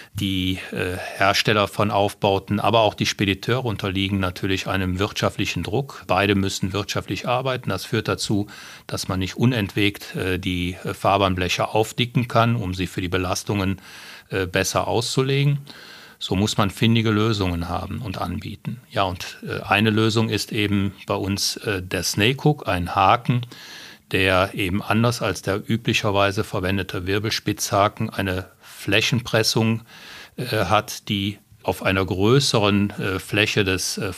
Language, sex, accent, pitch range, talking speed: German, male, German, 95-115 Hz, 135 wpm